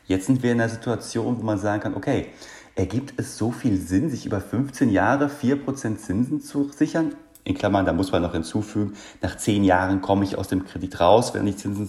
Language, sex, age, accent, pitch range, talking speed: German, male, 40-59, German, 95-115 Hz, 215 wpm